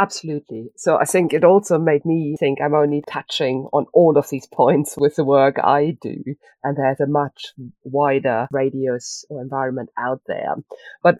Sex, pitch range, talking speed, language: female, 130-160 Hz, 175 wpm, English